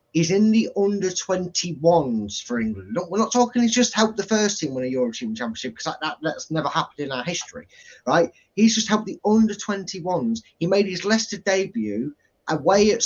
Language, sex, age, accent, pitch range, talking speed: English, male, 20-39, British, 130-195 Hz, 180 wpm